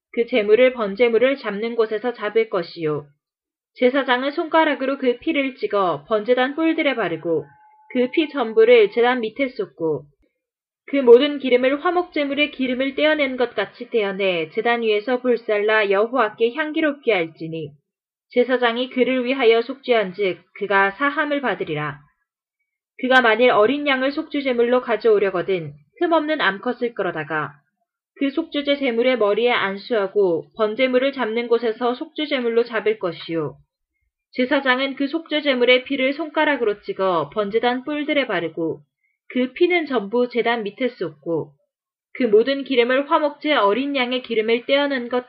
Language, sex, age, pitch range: Korean, female, 20-39, 205-275 Hz